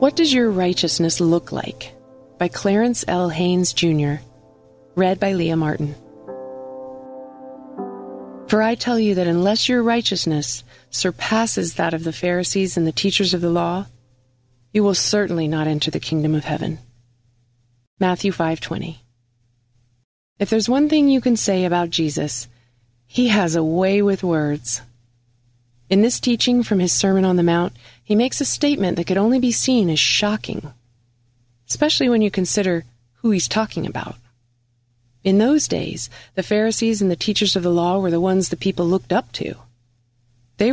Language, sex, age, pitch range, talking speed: English, female, 40-59, 125-205 Hz, 160 wpm